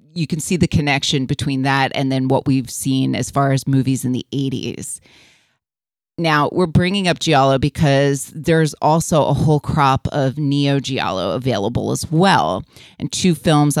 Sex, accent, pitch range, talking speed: female, American, 135-155 Hz, 165 wpm